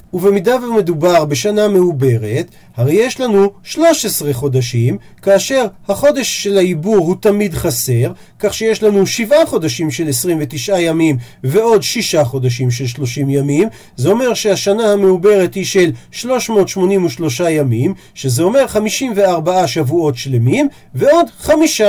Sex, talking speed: male, 125 wpm